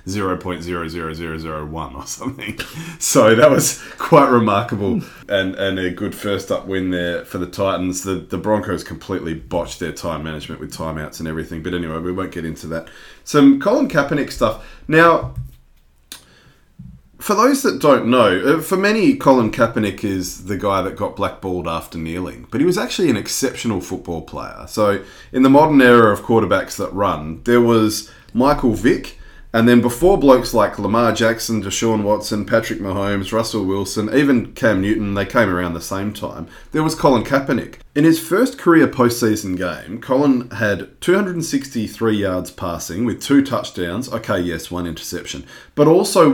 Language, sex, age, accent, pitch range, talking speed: English, male, 30-49, Australian, 90-125 Hz, 165 wpm